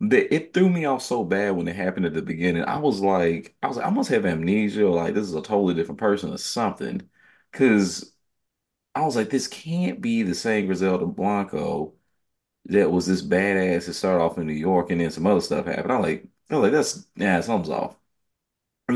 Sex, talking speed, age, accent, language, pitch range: male, 210 wpm, 30-49, American, English, 80-105 Hz